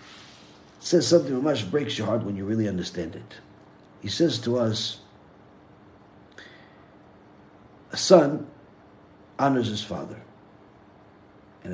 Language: English